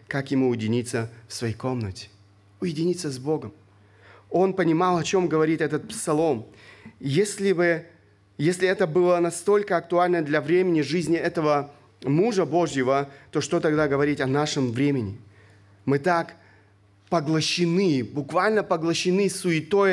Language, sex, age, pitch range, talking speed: Russian, male, 30-49, 125-175 Hz, 125 wpm